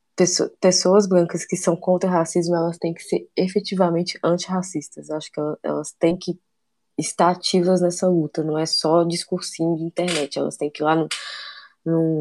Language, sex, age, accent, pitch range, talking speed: English, female, 20-39, Brazilian, 160-185 Hz, 175 wpm